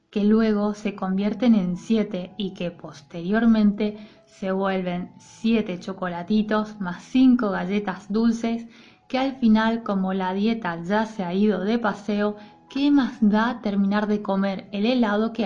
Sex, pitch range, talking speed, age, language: female, 190-220 Hz, 150 wpm, 20-39, Spanish